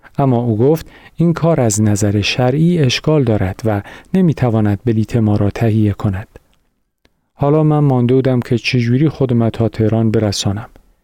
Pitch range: 110-140 Hz